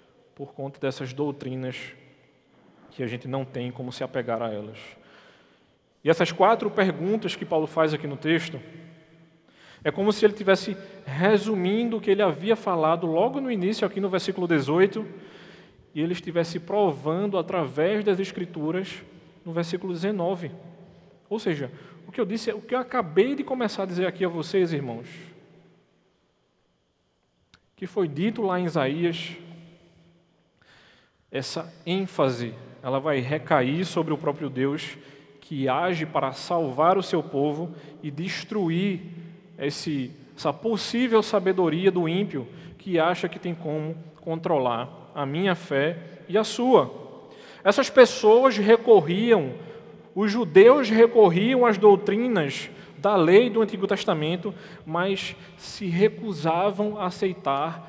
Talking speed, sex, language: 135 wpm, male, Portuguese